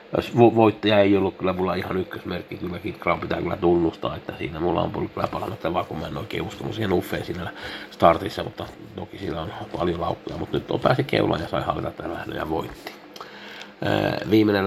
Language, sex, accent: Finnish, male, native